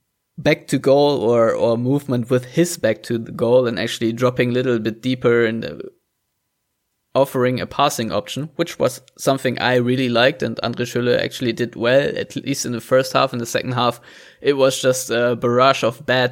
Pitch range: 120-140 Hz